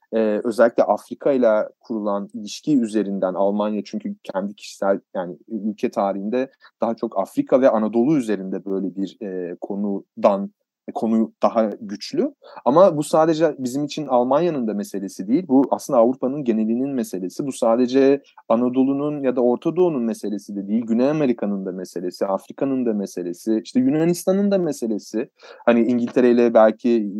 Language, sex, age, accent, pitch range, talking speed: Turkish, male, 30-49, native, 110-175 Hz, 140 wpm